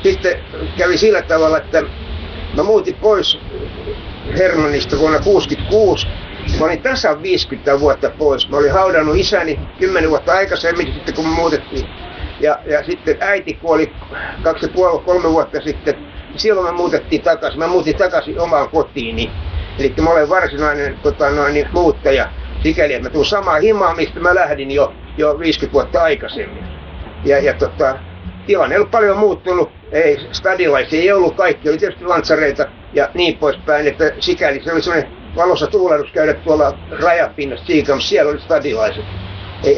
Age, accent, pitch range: 60-79, native, 145-210 Hz